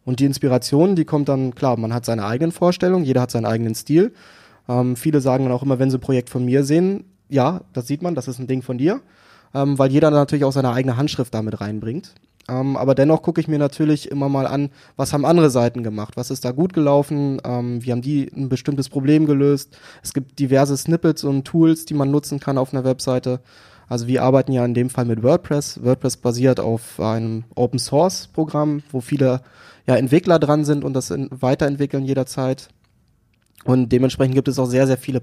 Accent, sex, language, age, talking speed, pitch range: German, male, German, 20-39, 210 wpm, 125-145 Hz